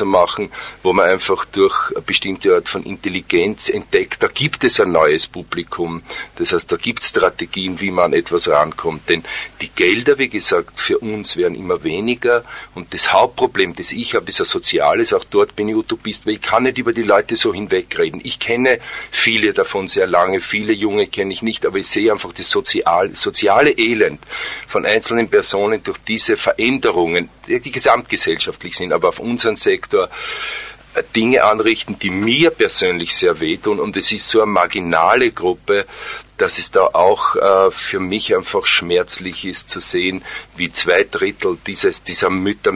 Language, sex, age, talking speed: German, male, 40-59, 175 wpm